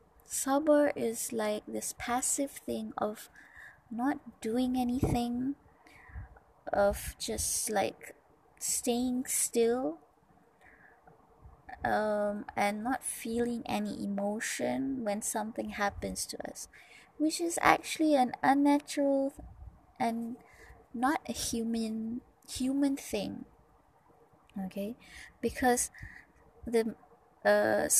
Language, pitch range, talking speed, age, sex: English, 205-260 Hz, 90 wpm, 20-39, female